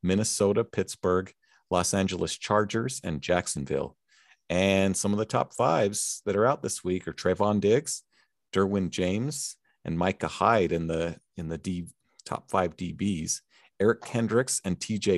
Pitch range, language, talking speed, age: 90-115 Hz, English, 150 wpm, 40-59